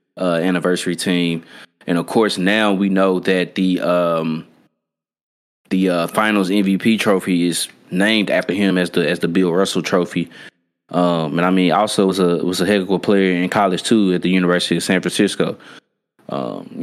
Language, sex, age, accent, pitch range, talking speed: English, male, 20-39, American, 85-100 Hz, 180 wpm